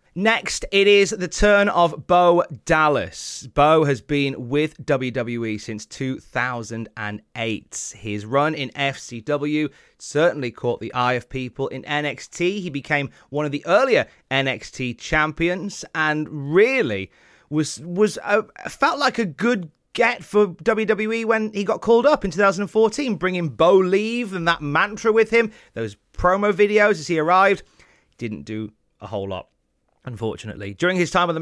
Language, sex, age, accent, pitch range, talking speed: English, male, 30-49, British, 130-175 Hz, 150 wpm